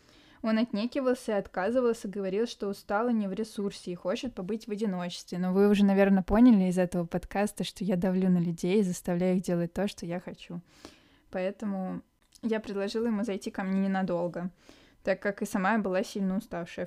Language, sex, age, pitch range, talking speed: Russian, female, 20-39, 185-220 Hz, 185 wpm